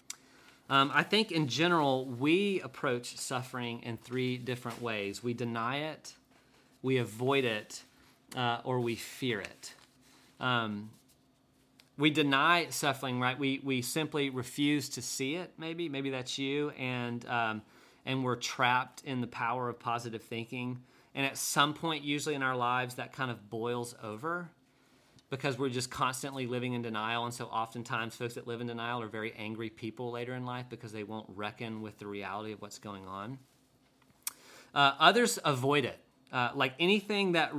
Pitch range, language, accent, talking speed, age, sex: 115-140 Hz, English, American, 165 wpm, 30-49, male